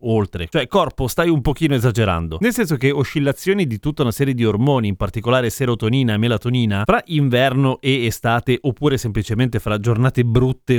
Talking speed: 170 wpm